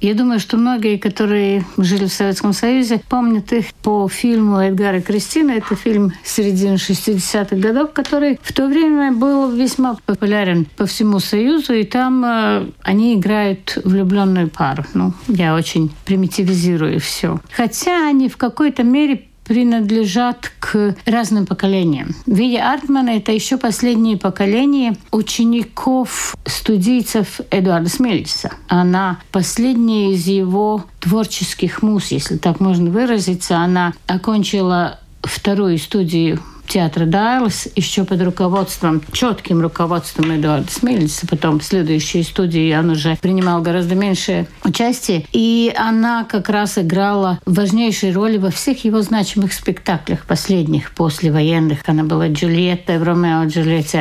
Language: Russian